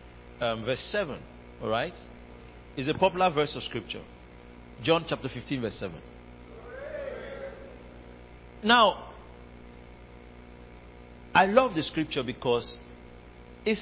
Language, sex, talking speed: English, male, 100 wpm